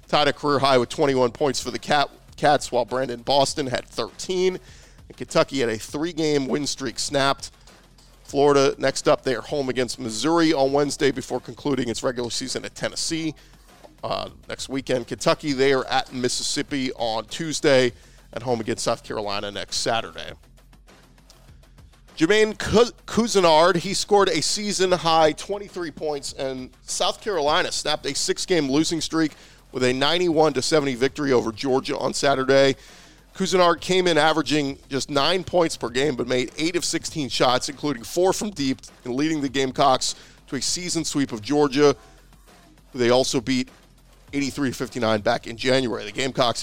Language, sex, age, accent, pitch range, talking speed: English, male, 40-59, American, 130-160 Hz, 150 wpm